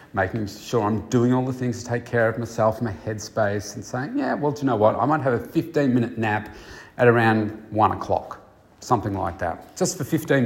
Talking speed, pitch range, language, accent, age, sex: 225 wpm, 100-120 Hz, English, Australian, 30-49, male